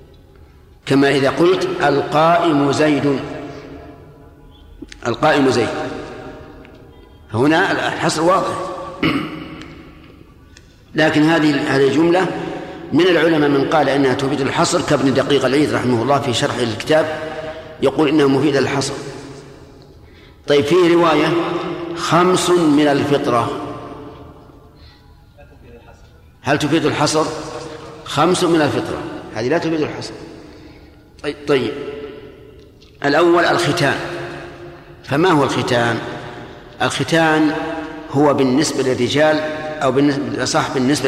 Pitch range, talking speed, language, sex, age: 135-155 Hz, 90 wpm, Arabic, male, 50-69